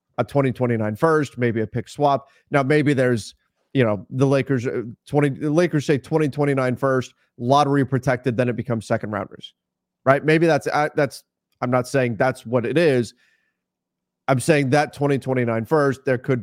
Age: 30-49